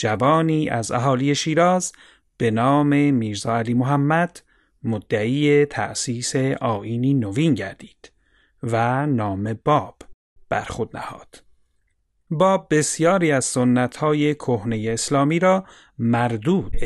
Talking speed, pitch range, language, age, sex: 100 wpm, 115-160 Hz, Persian, 40-59, male